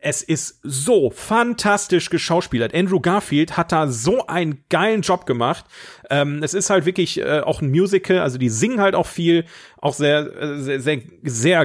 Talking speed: 175 wpm